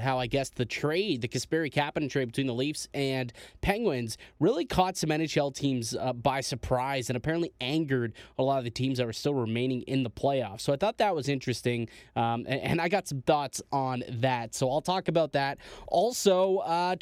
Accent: American